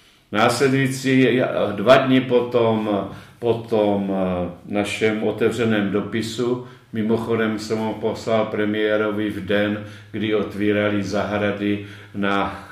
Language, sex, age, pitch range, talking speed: Czech, male, 50-69, 100-110 Hz, 90 wpm